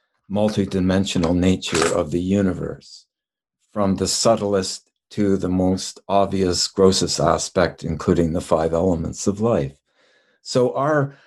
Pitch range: 95-115 Hz